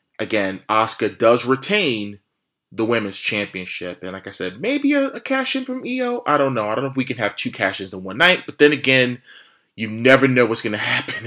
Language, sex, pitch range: English, male, 105-145 Hz